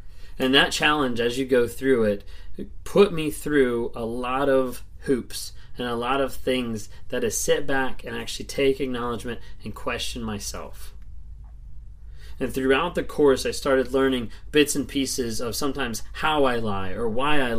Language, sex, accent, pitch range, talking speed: English, male, American, 105-150 Hz, 170 wpm